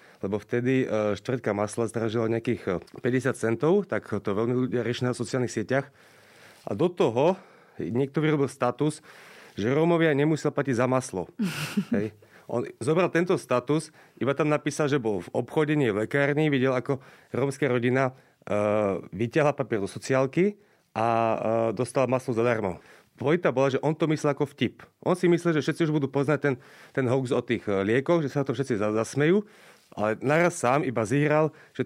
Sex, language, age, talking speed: male, Slovak, 30-49, 165 wpm